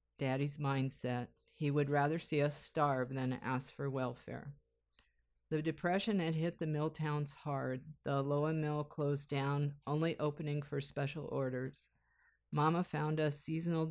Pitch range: 135-160 Hz